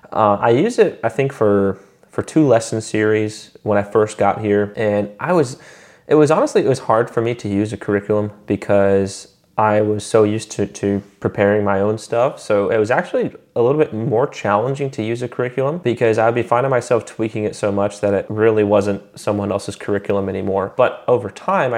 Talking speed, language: 205 wpm, English